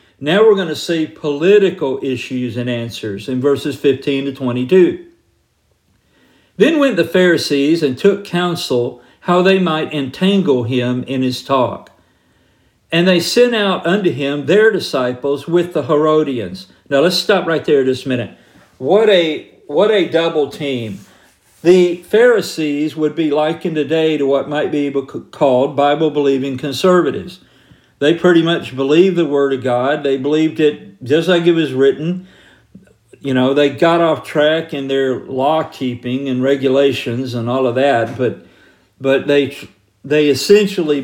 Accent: American